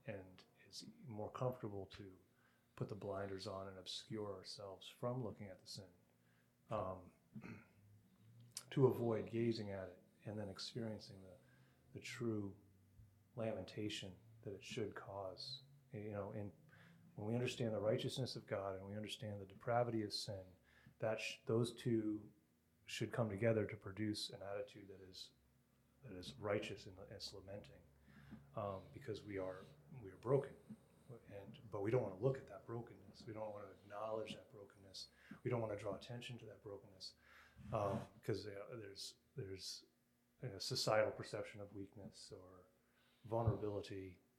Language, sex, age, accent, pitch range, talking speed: English, male, 30-49, American, 95-120 Hz, 160 wpm